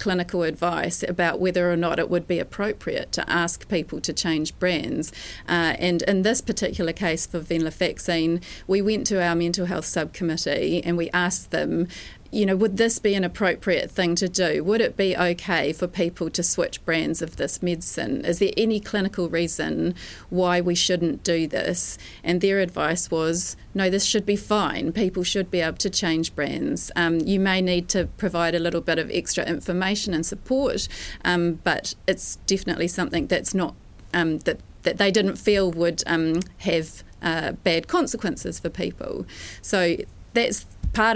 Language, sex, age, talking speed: English, female, 30-49, 180 wpm